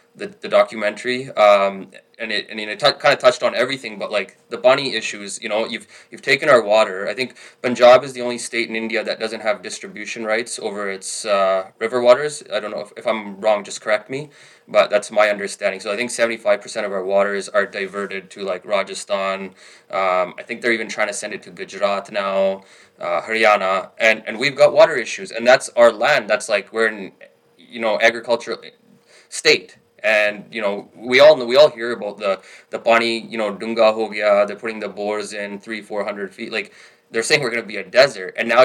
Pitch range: 100-120 Hz